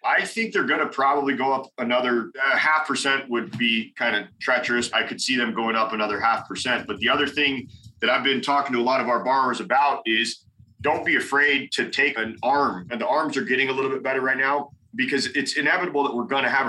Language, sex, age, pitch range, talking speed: English, male, 30-49, 115-135 Hz, 240 wpm